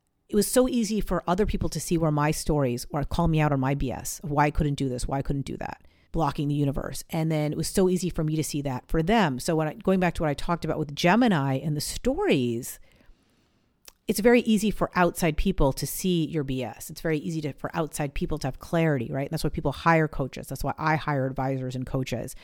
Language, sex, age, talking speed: English, female, 40-59, 255 wpm